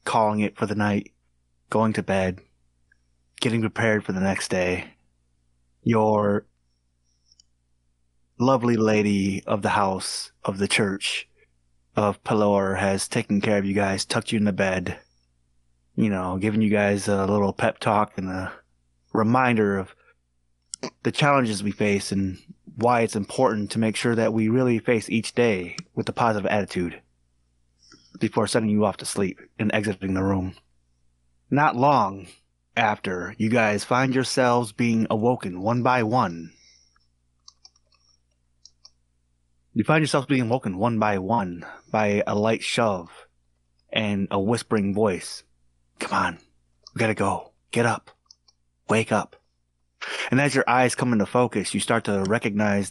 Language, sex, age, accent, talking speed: English, male, 30-49, American, 145 wpm